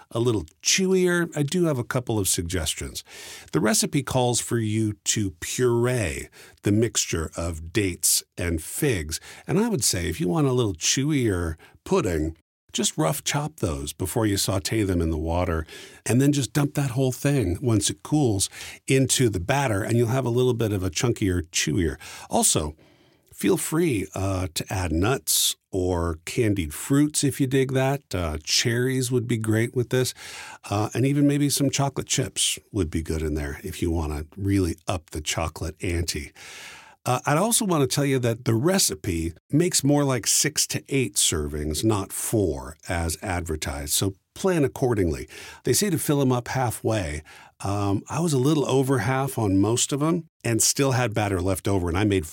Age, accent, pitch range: 50-69, American, 90-135 Hz